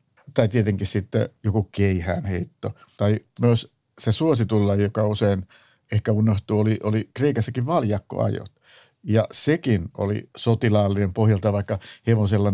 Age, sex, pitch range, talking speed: 50-69, male, 100-120 Hz, 120 wpm